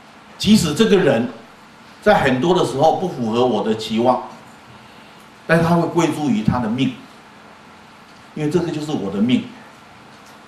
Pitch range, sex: 125-175 Hz, male